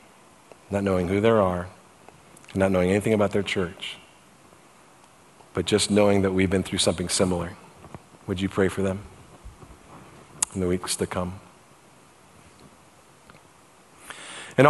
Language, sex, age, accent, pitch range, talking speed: English, male, 40-59, American, 100-120 Hz, 125 wpm